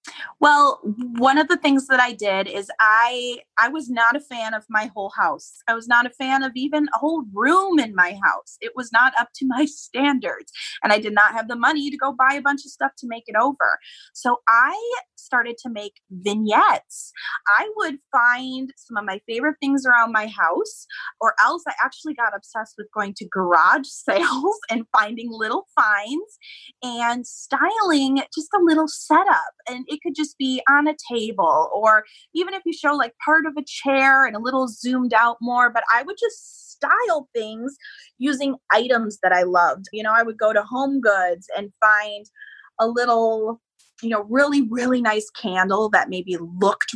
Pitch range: 215-290 Hz